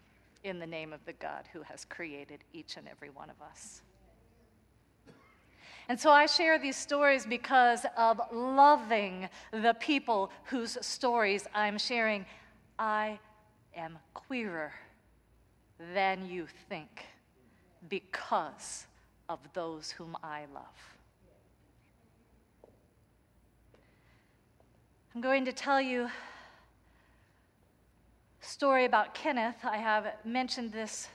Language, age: English, 40-59